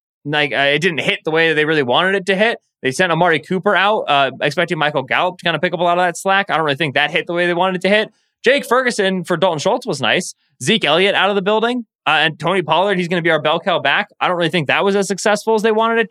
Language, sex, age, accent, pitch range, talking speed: English, male, 20-39, American, 145-195 Hz, 310 wpm